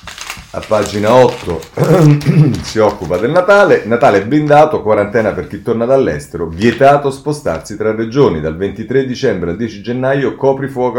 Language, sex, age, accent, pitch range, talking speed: Italian, male, 30-49, native, 90-120 Hz, 140 wpm